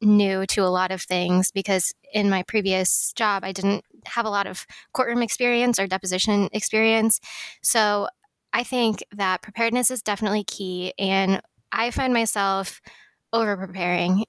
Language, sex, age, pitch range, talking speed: English, female, 20-39, 195-220 Hz, 145 wpm